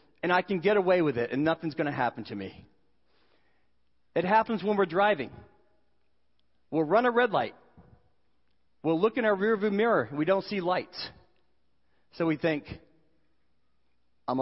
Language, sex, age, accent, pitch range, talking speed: English, male, 40-59, American, 140-200 Hz, 160 wpm